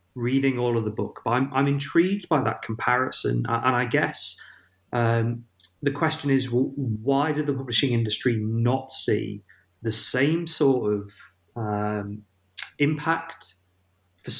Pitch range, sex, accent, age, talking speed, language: 105-125 Hz, male, British, 30-49, 140 wpm, English